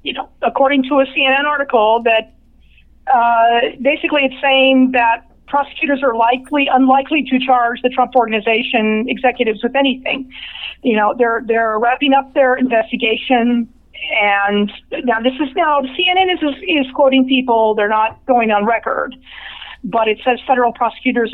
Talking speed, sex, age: 150 wpm, female, 40-59